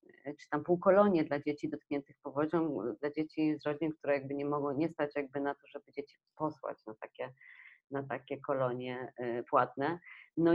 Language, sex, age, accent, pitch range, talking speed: Polish, female, 30-49, native, 145-170 Hz, 155 wpm